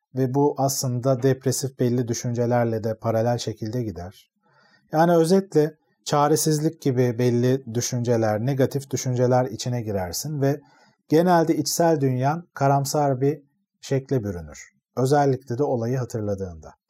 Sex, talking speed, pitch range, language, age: male, 115 wpm, 125-155 Hz, Turkish, 40-59